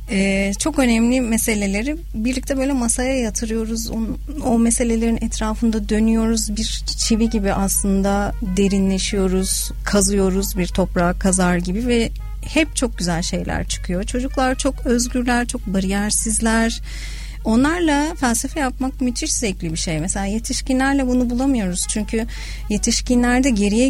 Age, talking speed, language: 40-59, 120 wpm, Turkish